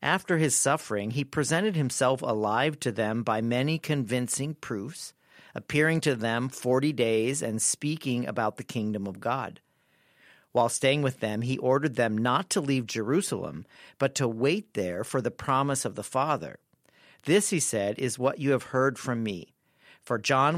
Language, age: English, 50-69